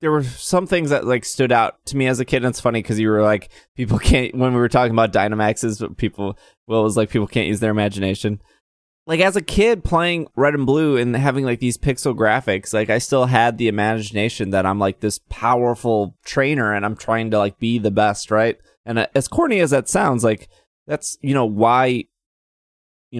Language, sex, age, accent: English, male, 20-39, American